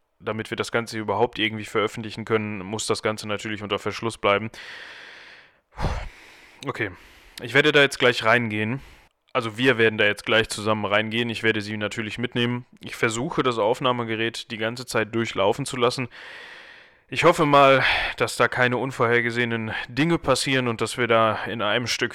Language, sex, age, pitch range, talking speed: German, male, 10-29, 100-120 Hz, 165 wpm